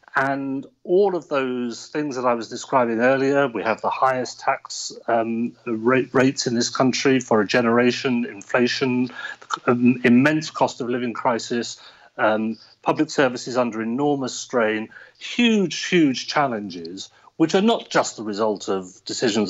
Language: English